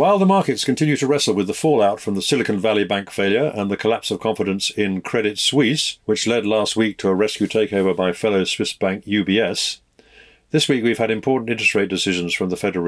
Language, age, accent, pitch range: English, 50-69, British, 95-115 Hz